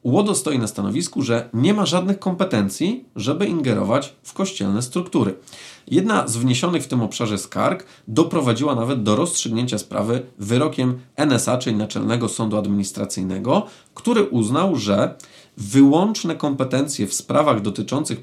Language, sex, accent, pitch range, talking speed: Polish, male, native, 105-140 Hz, 130 wpm